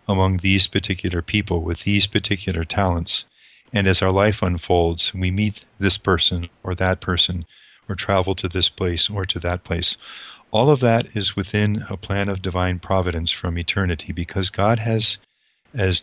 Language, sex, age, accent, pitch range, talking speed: English, male, 40-59, American, 90-110 Hz, 170 wpm